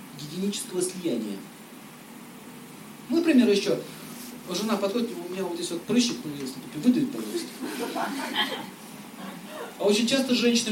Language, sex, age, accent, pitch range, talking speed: Russian, male, 40-59, native, 200-255 Hz, 110 wpm